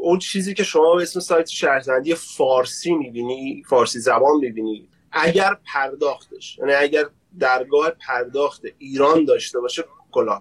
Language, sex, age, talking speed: Persian, male, 30-49, 135 wpm